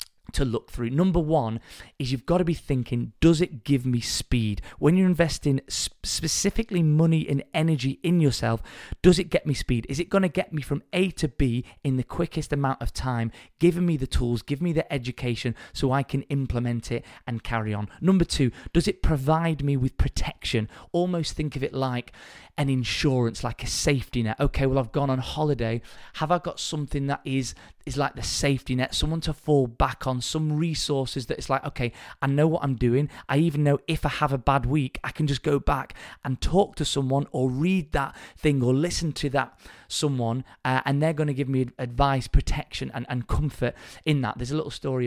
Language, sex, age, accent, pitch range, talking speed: English, male, 20-39, British, 125-155 Hz, 210 wpm